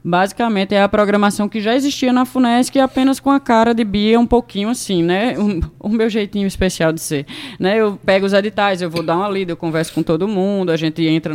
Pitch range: 170-235 Hz